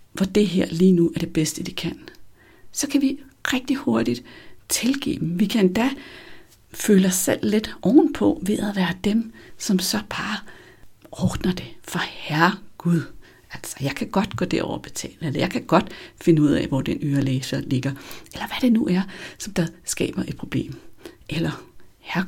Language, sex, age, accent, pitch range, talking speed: Danish, female, 60-79, native, 150-210 Hz, 185 wpm